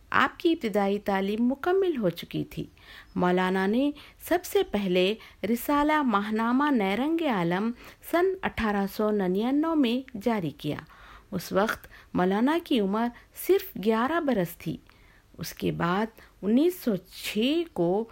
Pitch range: 180-260 Hz